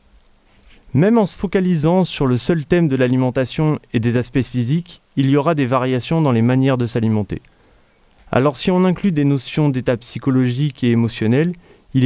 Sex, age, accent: male, 30-49, French